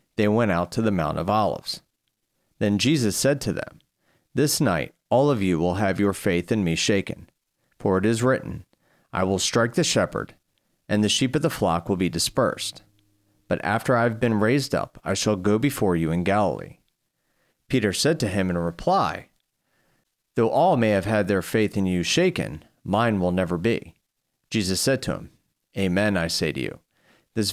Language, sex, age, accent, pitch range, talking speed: English, male, 40-59, American, 95-120 Hz, 190 wpm